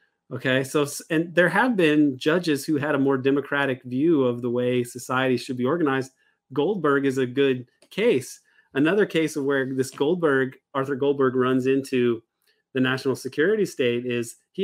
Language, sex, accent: English, male, American